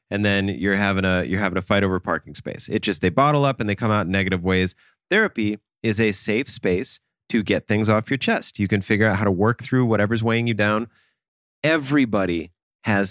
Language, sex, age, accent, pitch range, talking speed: English, male, 30-49, American, 100-155 Hz, 225 wpm